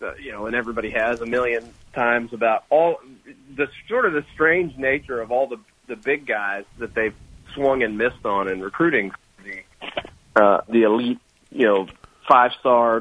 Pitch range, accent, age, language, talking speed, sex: 105-130 Hz, American, 40-59, English, 180 wpm, male